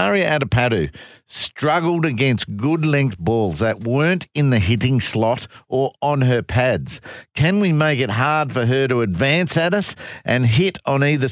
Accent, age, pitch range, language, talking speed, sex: Australian, 50-69, 115-150 Hz, English, 170 wpm, male